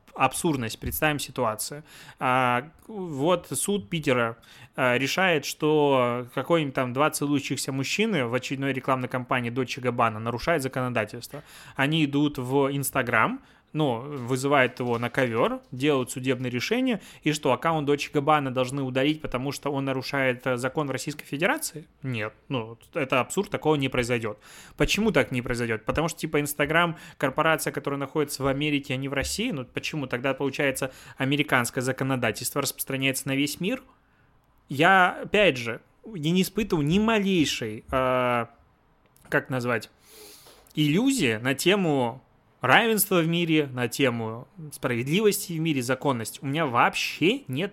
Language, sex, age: Russian, male, 20-39